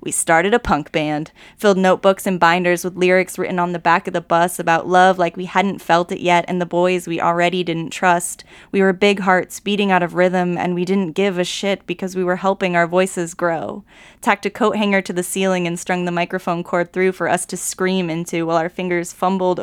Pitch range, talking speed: 175-195 Hz, 230 wpm